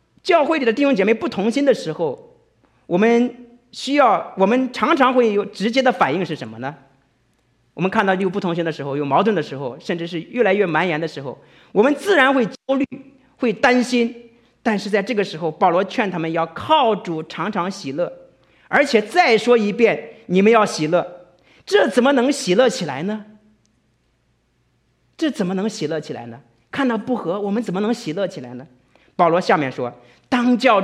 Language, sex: Chinese, male